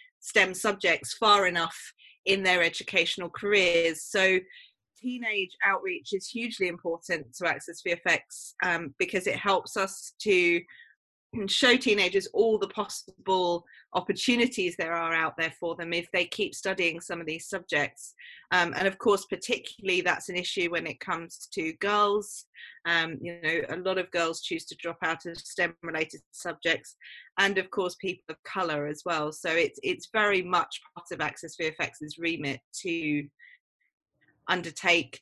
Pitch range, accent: 165-195 Hz, British